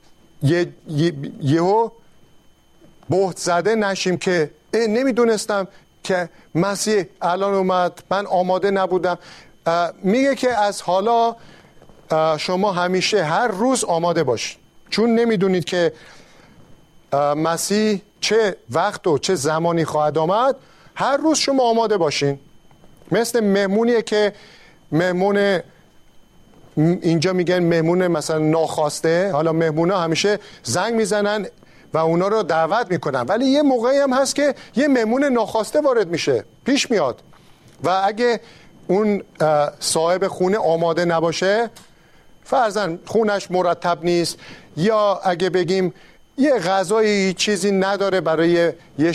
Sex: male